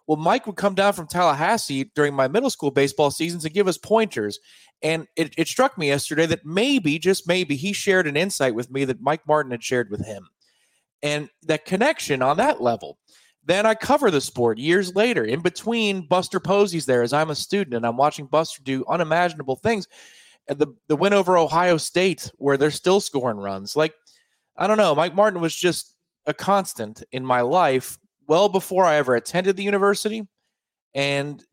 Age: 30-49